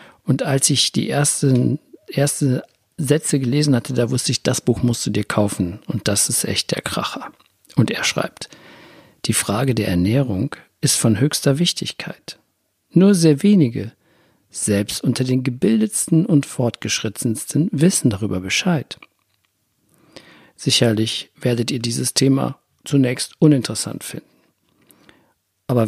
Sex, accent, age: male, German, 50-69